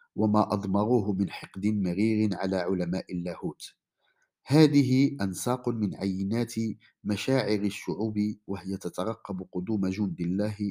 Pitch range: 95-115 Hz